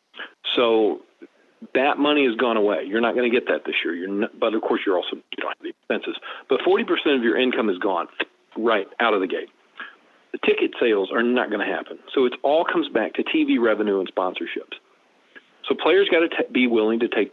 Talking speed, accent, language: 220 wpm, American, English